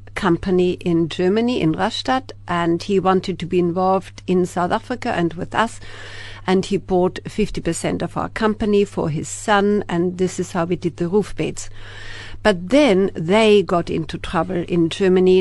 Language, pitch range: English, 150-190 Hz